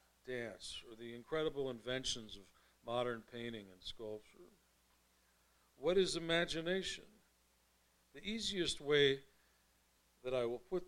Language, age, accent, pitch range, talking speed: English, 50-69, American, 105-140 Hz, 110 wpm